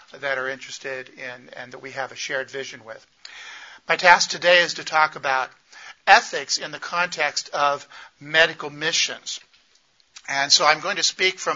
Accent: American